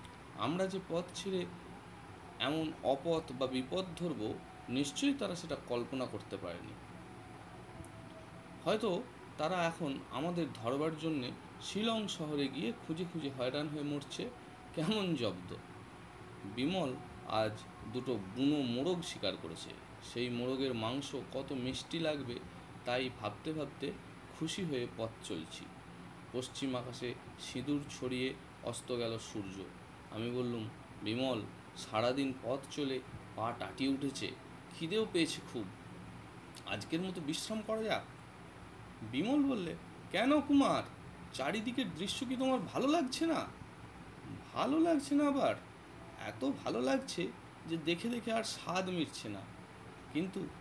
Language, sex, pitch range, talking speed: Bengali, male, 125-185 Hz, 115 wpm